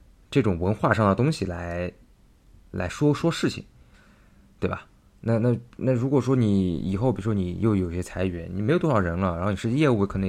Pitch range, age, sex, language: 95-120 Hz, 20-39, male, Chinese